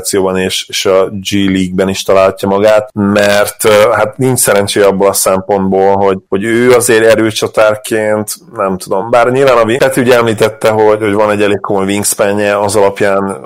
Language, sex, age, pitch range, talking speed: Hungarian, male, 30-49, 95-110 Hz, 160 wpm